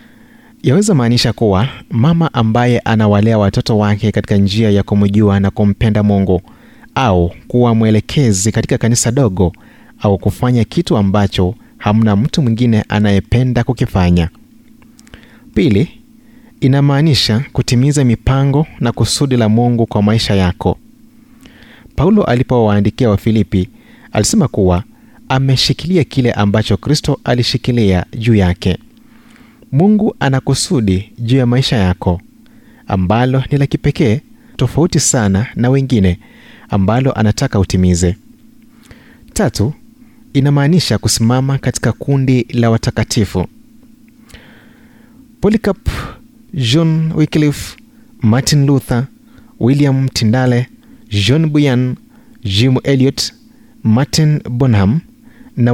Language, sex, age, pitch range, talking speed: Swahili, male, 30-49, 105-150 Hz, 100 wpm